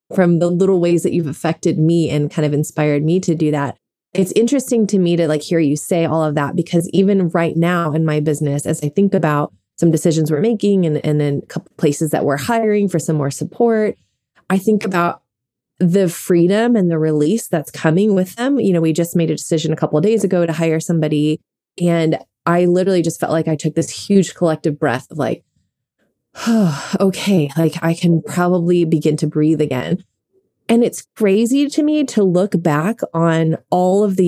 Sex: female